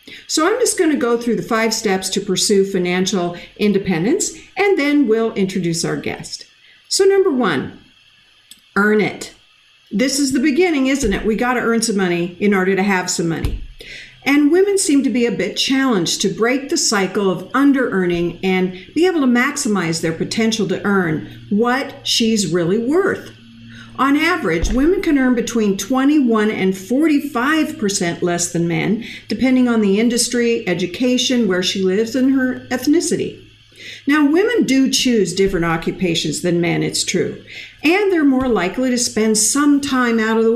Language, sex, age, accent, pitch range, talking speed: English, female, 50-69, American, 190-275 Hz, 165 wpm